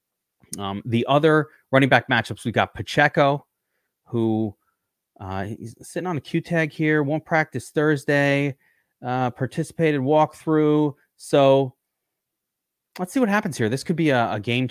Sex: male